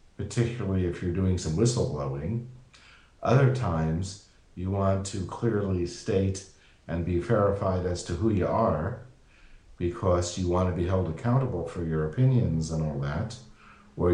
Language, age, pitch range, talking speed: English, 40-59, 85-110 Hz, 150 wpm